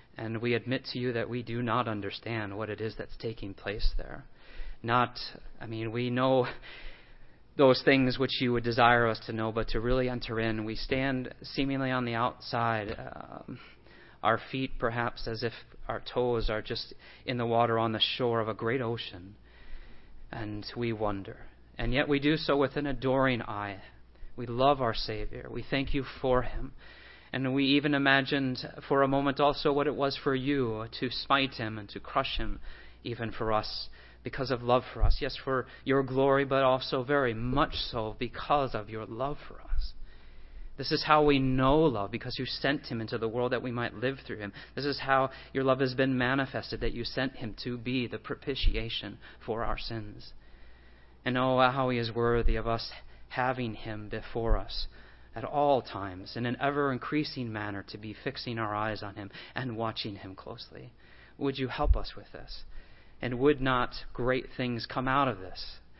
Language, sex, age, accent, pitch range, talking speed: English, male, 30-49, American, 110-130 Hz, 190 wpm